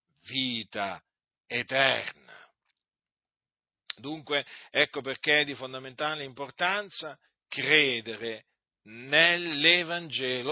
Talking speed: 65 wpm